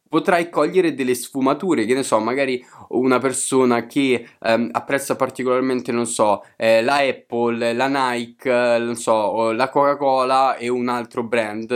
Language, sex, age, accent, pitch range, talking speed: Italian, male, 20-39, native, 120-145 Hz, 155 wpm